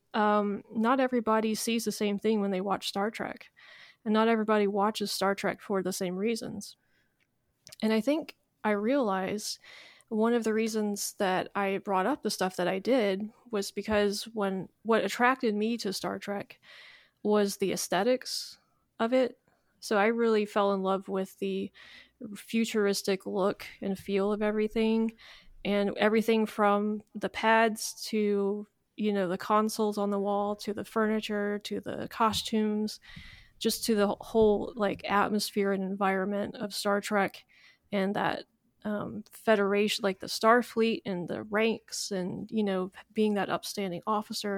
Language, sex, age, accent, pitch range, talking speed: English, female, 20-39, American, 200-220 Hz, 155 wpm